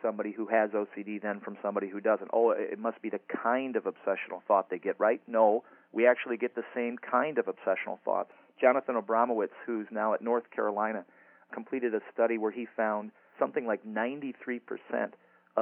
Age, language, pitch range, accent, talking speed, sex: 40-59, English, 105-120 Hz, American, 180 wpm, male